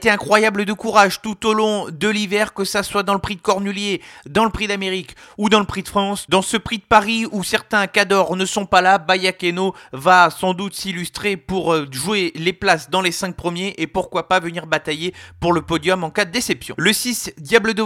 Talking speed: 225 wpm